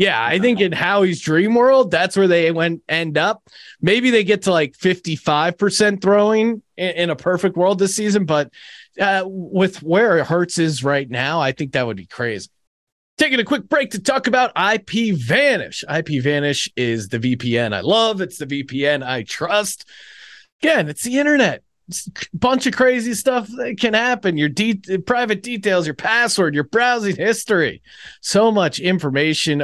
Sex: male